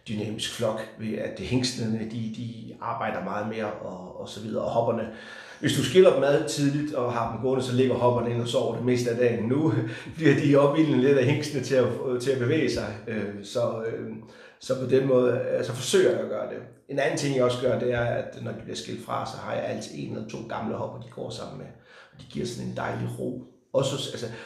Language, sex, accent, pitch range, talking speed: Danish, male, native, 115-130 Hz, 235 wpm